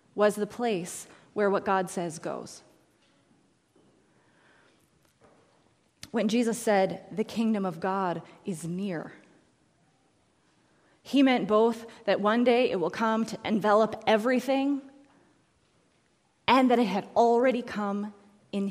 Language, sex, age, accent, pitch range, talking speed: English, female, 20-39, American, 195-235 Hz, 115 wpm